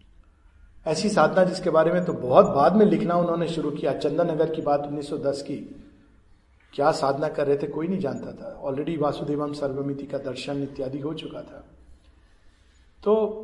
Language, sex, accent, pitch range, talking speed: Hindi, male, native, 140-210 Hz, 165 wpm